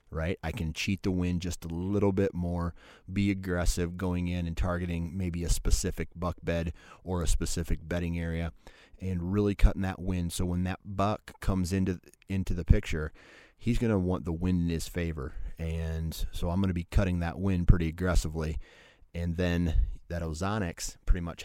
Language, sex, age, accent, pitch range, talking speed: English, male, 30-49, American, 80-95 Hz, 185 wpm